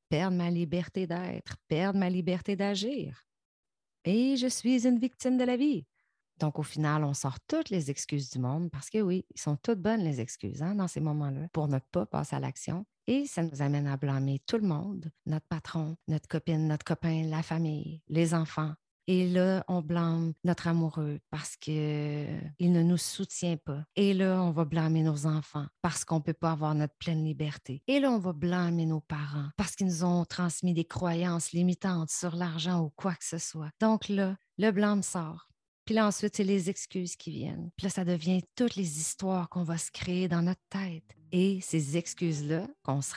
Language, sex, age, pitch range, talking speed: French, female, 30-49, 155-185 Hz, 205 wpm